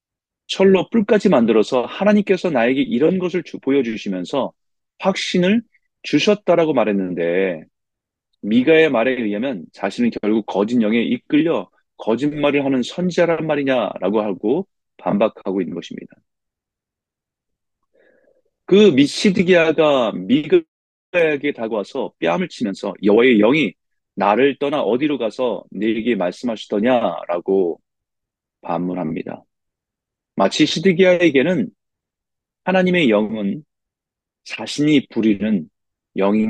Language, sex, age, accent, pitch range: Korean, male, 30-49, native, 115-190 Hz